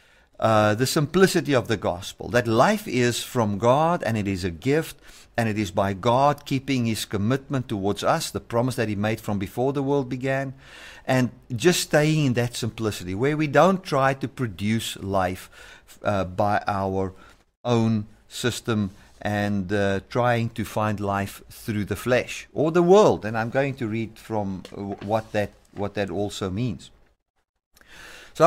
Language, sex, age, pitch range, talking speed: English, male, 50-69, 105-140 Hz, 165 wpm